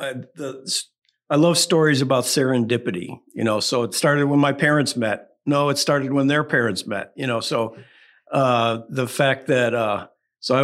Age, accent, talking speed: 50-69, American, 185 wpm